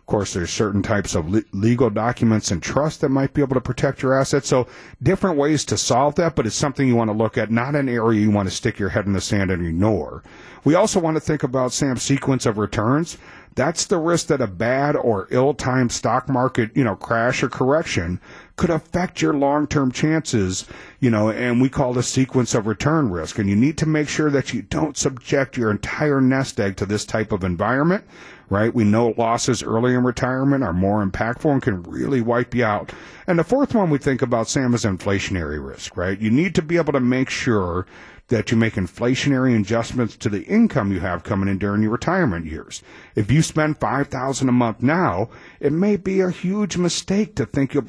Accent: American